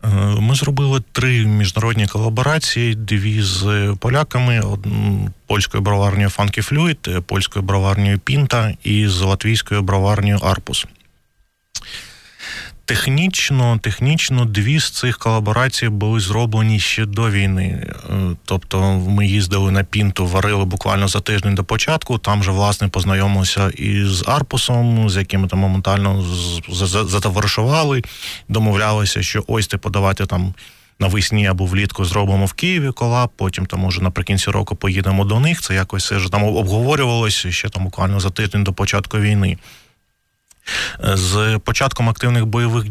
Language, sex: Ukrainian, male